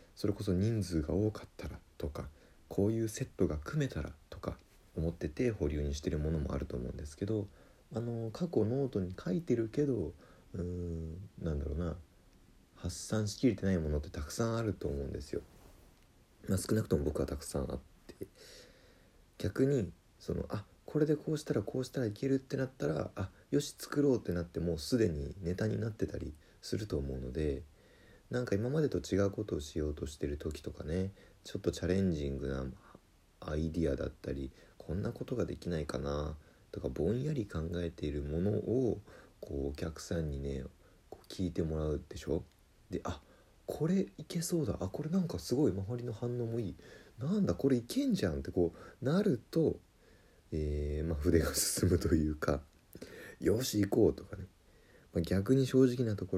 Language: Japanese